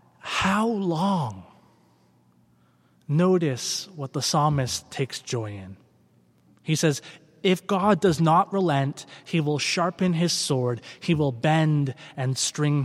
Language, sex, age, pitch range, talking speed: English, male, 20-39, 130-180 Hz, 120 wpm